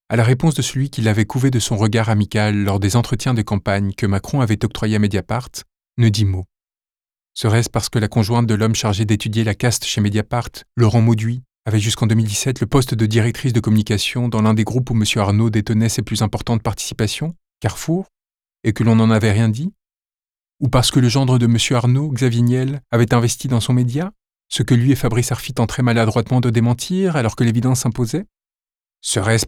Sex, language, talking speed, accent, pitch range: male, French, 205 wpm, French, 110-130 Hz